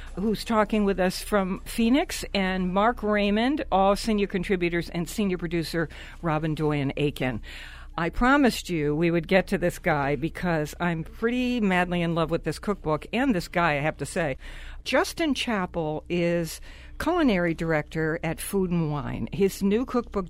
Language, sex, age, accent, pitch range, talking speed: English, female, 60-79, American, 155-210 Hz, 160 wpm